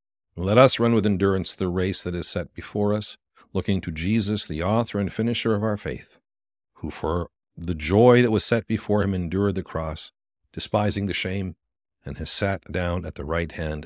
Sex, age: male, 50-69